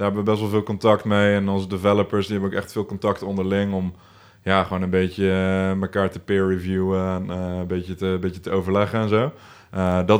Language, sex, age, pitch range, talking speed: Dutch, male, 20-39, 95-105 Hz, 235 wpm